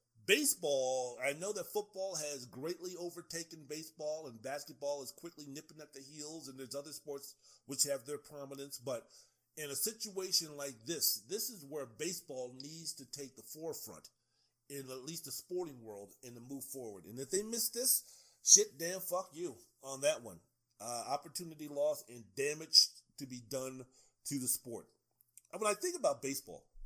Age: 40-59